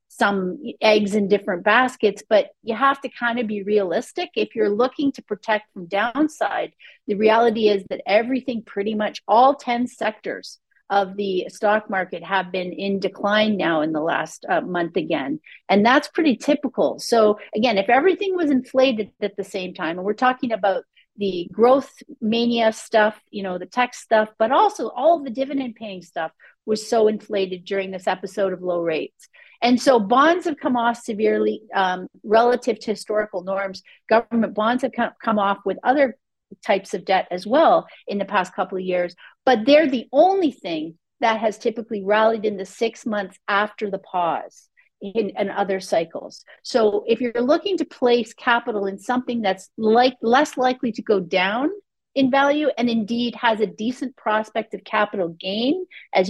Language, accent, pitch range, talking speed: English, American, 200-250 Hz, 180 wpm